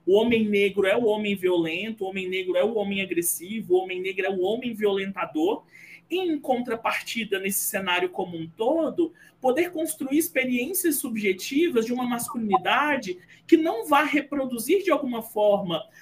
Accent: Brazilian